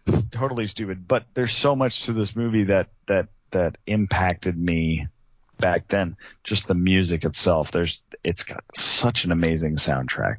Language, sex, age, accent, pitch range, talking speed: English, male, 30-49, American, 85-105 Hz, 155 wpm